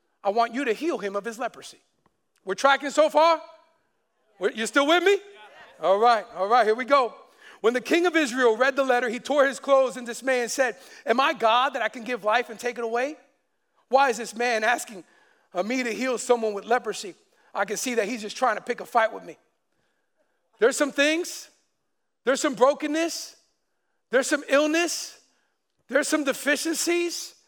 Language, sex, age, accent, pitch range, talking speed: English, male, 50-69, American, 230-285 Hz, 195 wpm